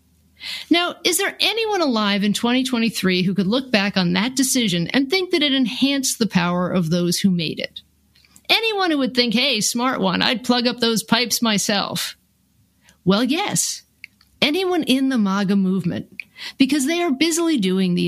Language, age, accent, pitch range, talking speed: English, 50-69, American, 185-260 Hz, 175 wpm